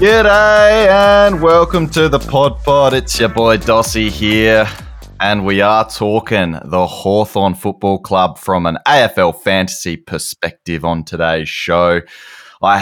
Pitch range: 90-130 Hz